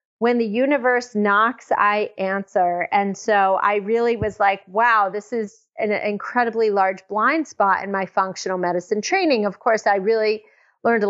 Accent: American